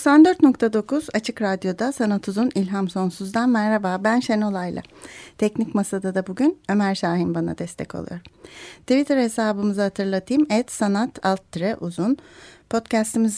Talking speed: 120 wpm